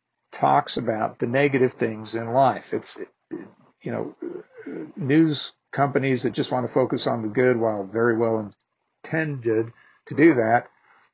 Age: 50-69